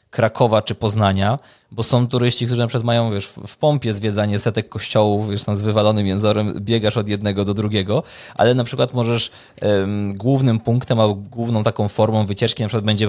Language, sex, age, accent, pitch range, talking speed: Polish, male, 20-39, native, 100-120 Hz, 190 wpm